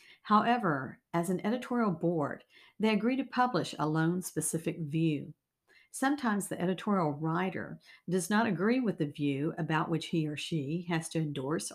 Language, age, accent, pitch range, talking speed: English, 50-69, American, 160-210 Hz, 160 wpm